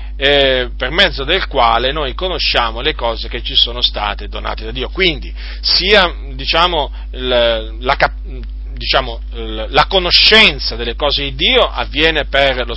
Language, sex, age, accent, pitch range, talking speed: Italian, male, 40-59, native, 105-160 Hz, 150 wpm